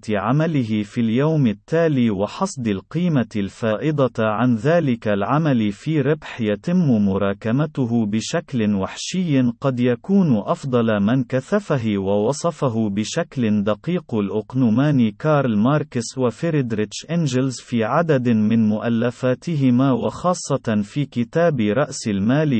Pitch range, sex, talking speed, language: 110-150 Hz, male, 100 wpm, Arabic